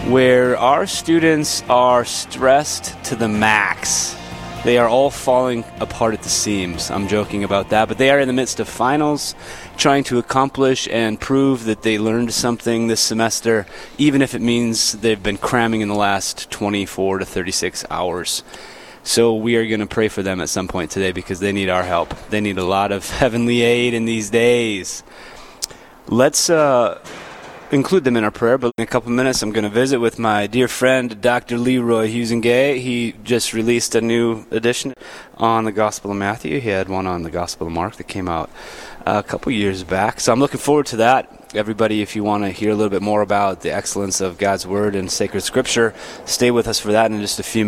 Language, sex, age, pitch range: English, male, 30-49, 100-120 Hz